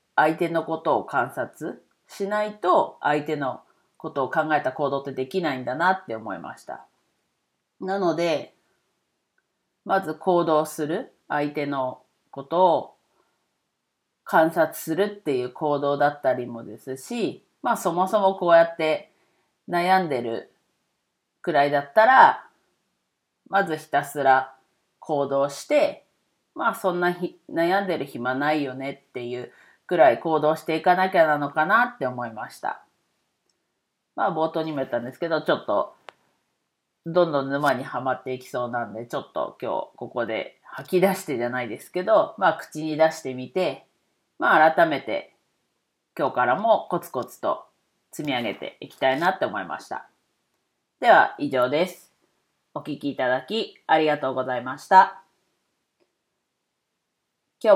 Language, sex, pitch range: Japanese, female, 135-175 Hz